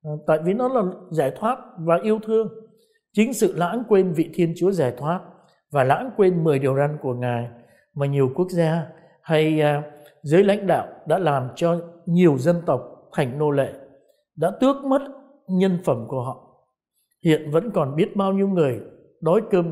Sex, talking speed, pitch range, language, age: male, 185 wpm, 155-205 Hz, Vietnamese, 60-79